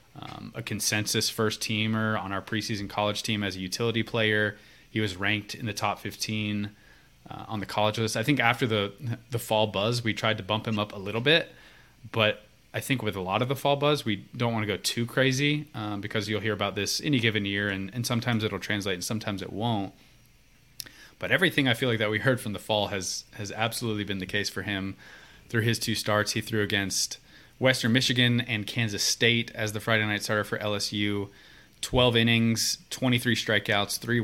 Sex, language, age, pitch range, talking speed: male, English, 20-39, 105-120 Hz, 210 wpm